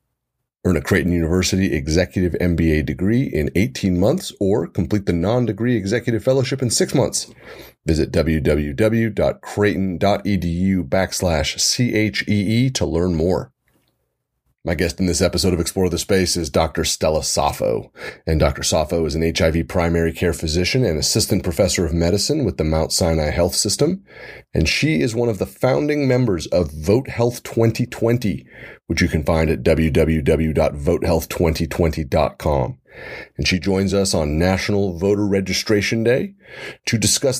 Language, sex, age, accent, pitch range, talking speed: English, male, 30-49, American, 85-110 Hz, 140 wpm